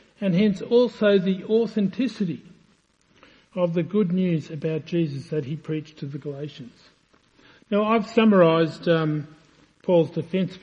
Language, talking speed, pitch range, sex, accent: English, 135 wpm, 160-200 Hz, male, Australian